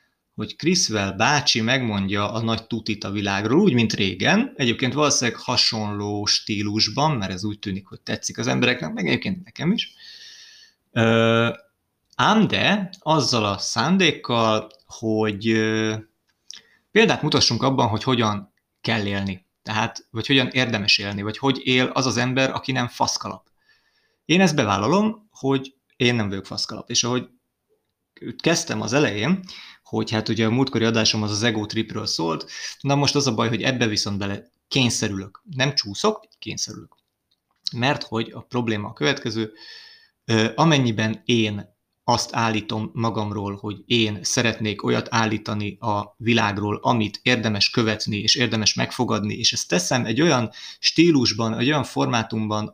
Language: Hungarian